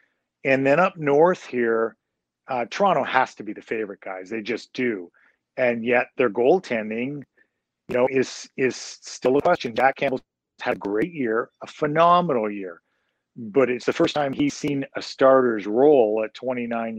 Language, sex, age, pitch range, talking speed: English, male, 40-59, 115-145 Hz, 170 wpm